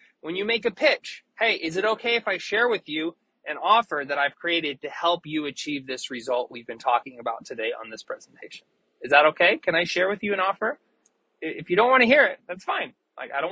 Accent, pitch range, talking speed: American, 150-210 Hz, 245 wpm